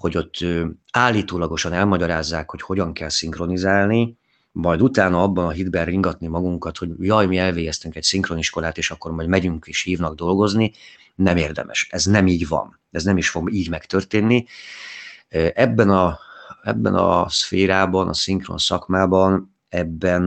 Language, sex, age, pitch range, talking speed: Hungarian, male, 30-49, 85-95 Hz, 145 wpm